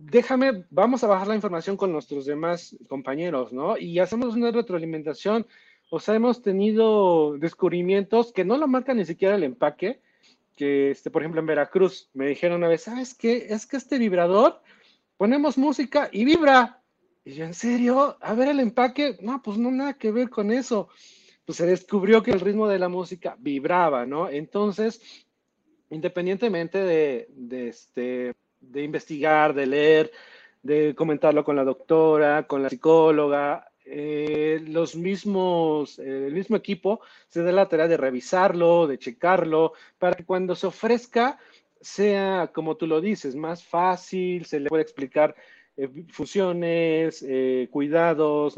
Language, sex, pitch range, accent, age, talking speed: Spanish, male, 150-210 Hz, Mexican, 40-59, 155 wpm